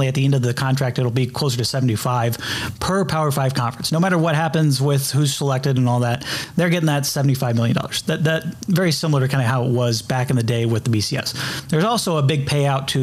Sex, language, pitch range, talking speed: male, English, 125-150 Hz, 250 wpm